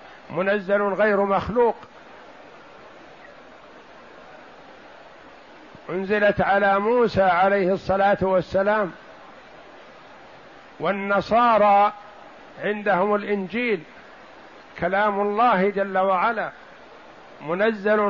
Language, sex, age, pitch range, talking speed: Arabic, male, 60-79, 190-210 Hz, 55 wpm